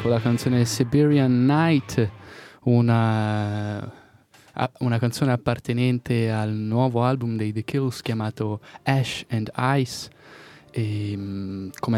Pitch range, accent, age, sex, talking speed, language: 105-125 Hz, native, 20-39, male, 100 wpm, Italian